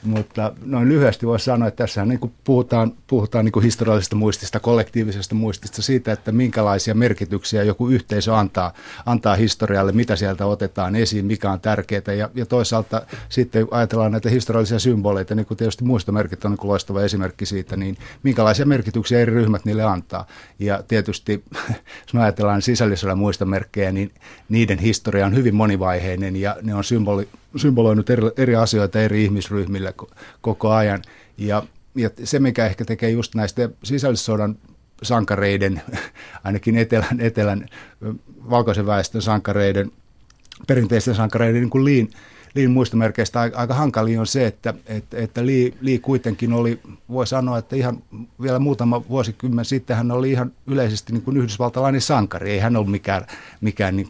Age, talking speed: 60-79, 150 wpm